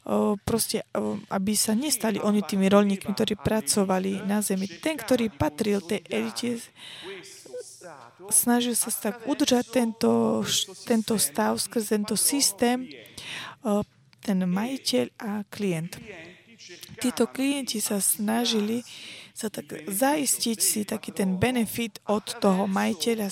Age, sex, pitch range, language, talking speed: 20-39, female, 170-230 Hz, Slovak, 125 wpm